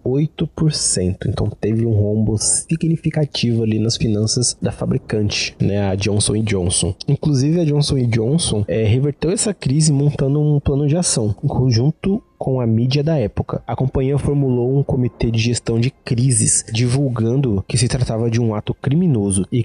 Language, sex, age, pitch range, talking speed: Portuguese, male, 20-39, 115-140 Hz, 160 wpm